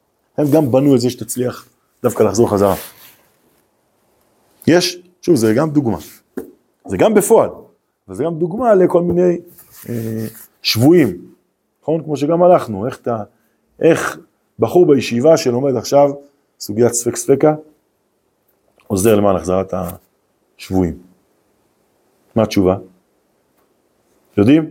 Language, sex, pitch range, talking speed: English, male, 110-165 Hz, 80 wpm